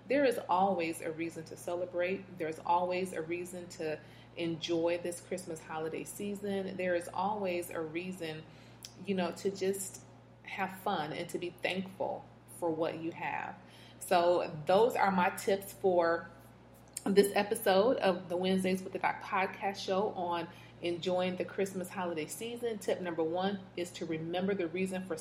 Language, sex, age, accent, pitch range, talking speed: English, female, 30-49, American, 170-195 Hz, 160 wpm